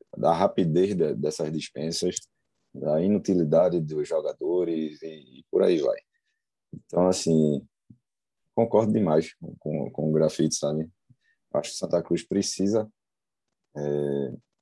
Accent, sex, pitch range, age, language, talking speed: Brazilian, male, 85-110 Hz, 20-39, Portuguese, 125 wpm